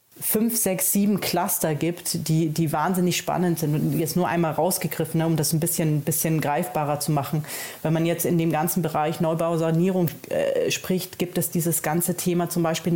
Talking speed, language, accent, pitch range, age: 200 wpm, German, German, 160-180 Hz, 30-49